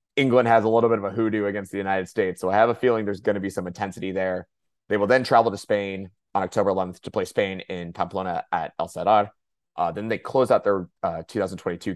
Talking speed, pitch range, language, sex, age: 245 wpm, 95-115 Hz, English, male, 20-39